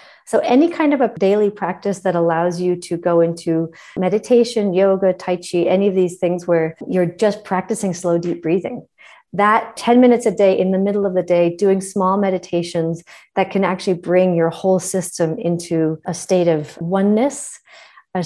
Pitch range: 170-215 Hz